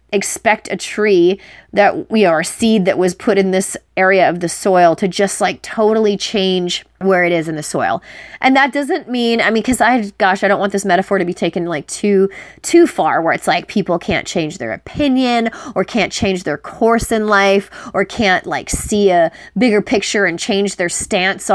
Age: 30-49